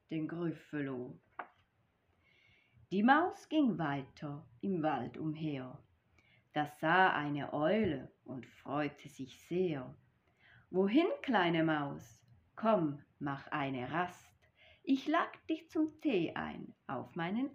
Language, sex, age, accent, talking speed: German, female, 30-49, German, 110 wpm